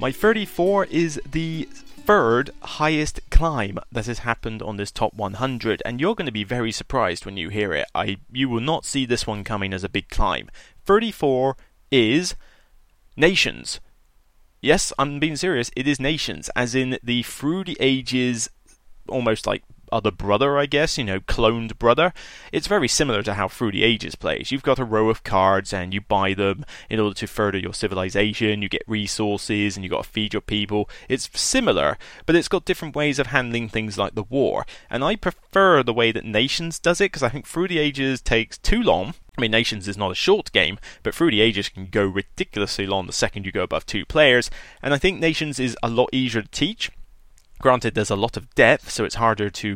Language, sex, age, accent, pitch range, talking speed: English, male, 30-49, British, 105-145 Hz, 205 wpm